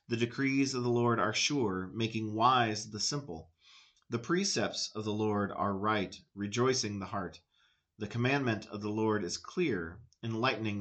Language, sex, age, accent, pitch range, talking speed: English, male, 30-49, American, 100-125 Hz, 160 wpm